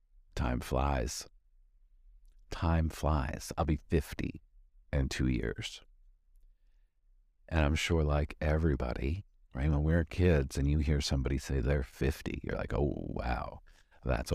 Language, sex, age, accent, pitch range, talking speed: English, male, 50-69, American, 70-100 Hz, 130 wpm